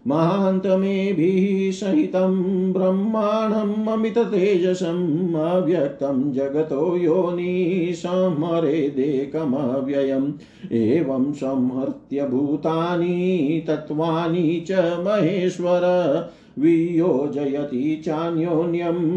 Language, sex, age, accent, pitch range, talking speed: Hindi, male, 50-69, native, 145-180 Hz, 40 wpm